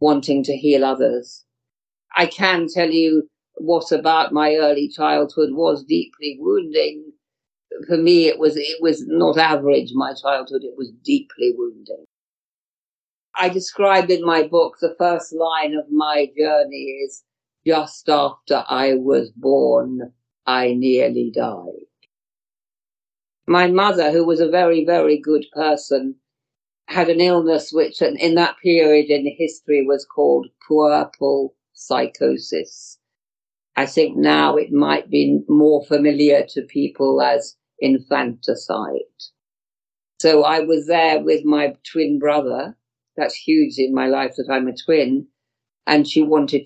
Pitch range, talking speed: 135-165 Hz, 135 wpm